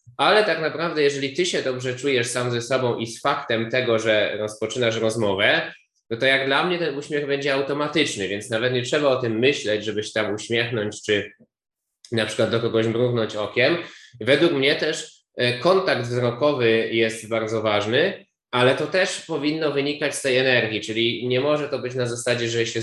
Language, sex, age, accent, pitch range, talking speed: Polish, male, 20-39, native, 105-135 Hz, 180 wpm